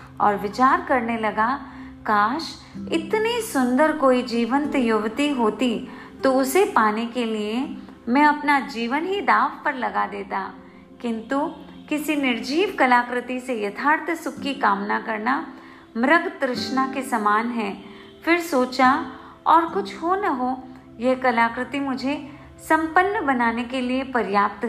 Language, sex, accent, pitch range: Hindi, female, native, 220-290 Hz